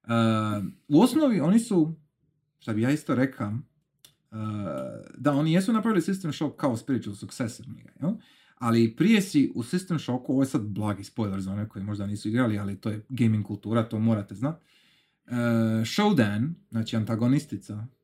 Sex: male